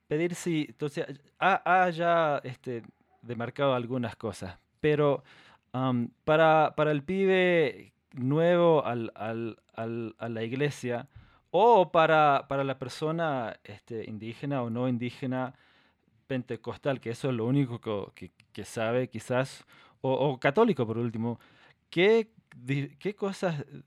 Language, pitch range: Spanish, 120-155 Hz